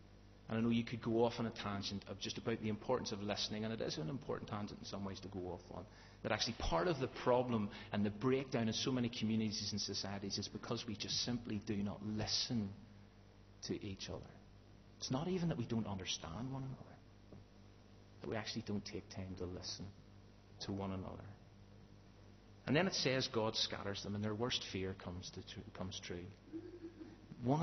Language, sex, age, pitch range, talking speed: English, male, 30-49, 100-120 Hz, 200 wpm